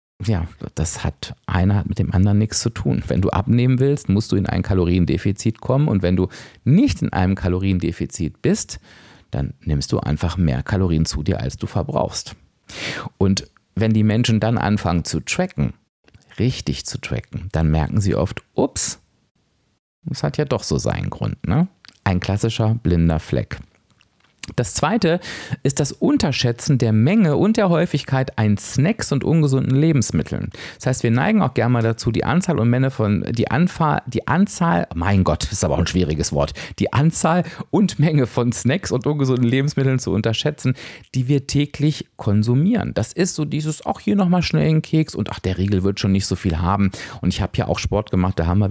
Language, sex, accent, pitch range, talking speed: German, male, German, 95-135 Hz, 185 wpm